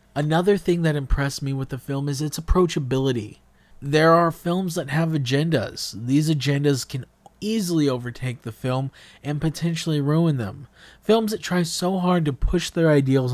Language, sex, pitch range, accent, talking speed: English, male, 125-155 Hz, American, 165 wpm